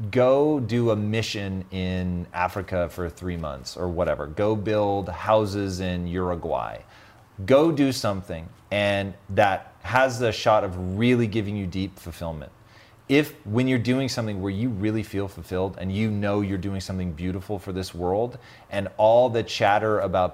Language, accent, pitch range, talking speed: English, American, 95-120 Hz, 160 wpm